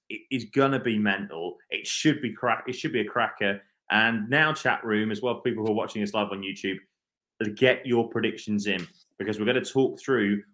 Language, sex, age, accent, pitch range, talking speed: English, male, 30-49, British, 105-150 Hz, 220 wpm